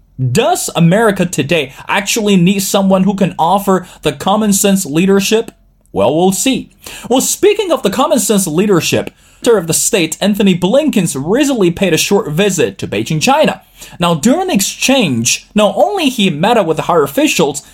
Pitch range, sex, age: 160-220 Hz, male, 30-49